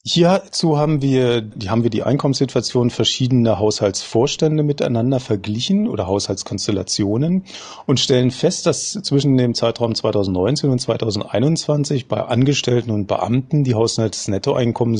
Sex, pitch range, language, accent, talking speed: male, 105-135 Hz, German, German, 120 wpm